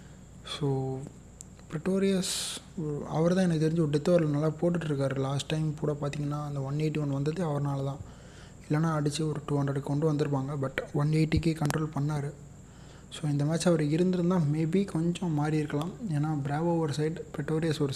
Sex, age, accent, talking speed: male, 30-49, native, 165 wpm